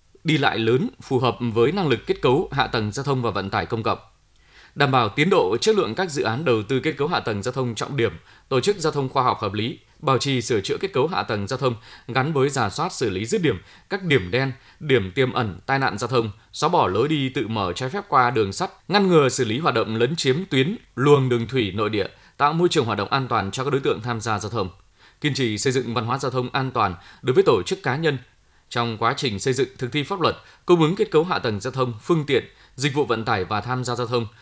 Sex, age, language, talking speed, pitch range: male, 20-39, Vietnamese, 275 wpm, 110-140 Hz